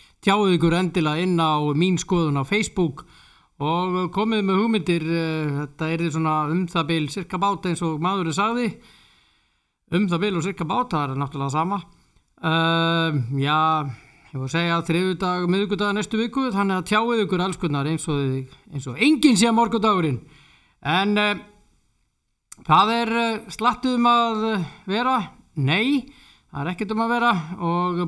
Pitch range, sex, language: 150-210 Hz, male, English